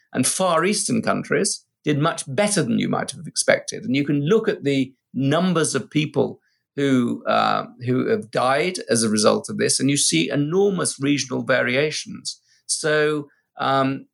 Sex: male